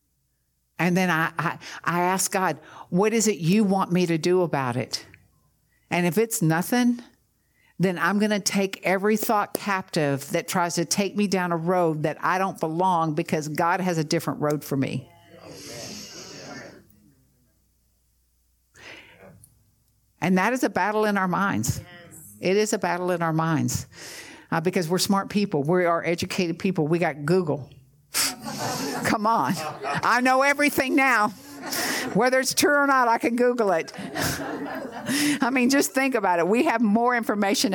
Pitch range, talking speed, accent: 170-235 Hz, 160 wpm, American